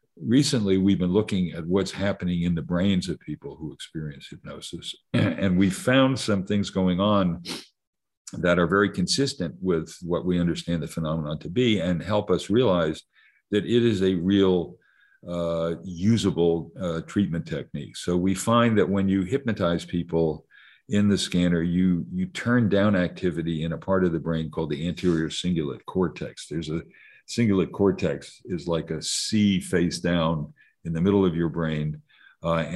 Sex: male